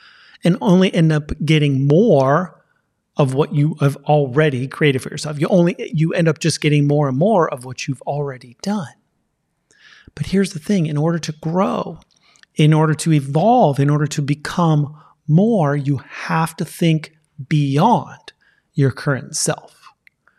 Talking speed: 155 wpm